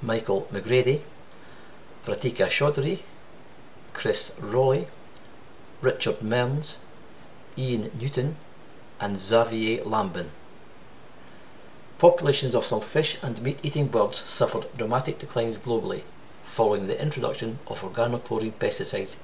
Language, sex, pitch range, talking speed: English, male, 115-140 Hz, 95 wpm